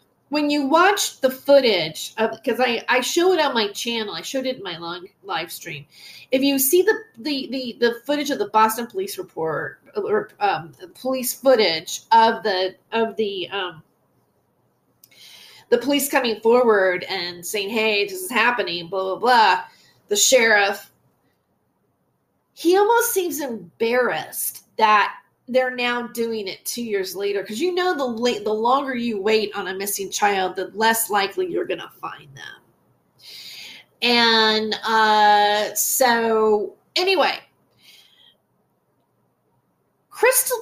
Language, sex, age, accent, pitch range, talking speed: English, female, 30-49, American, 205-285 Hz, 140 wpm